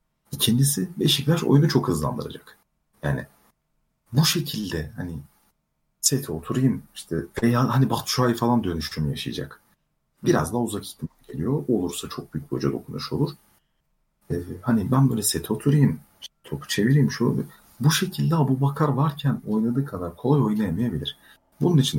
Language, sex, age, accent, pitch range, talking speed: Turkish, male, 40-59, native, 105-145 Hz, 140 wpm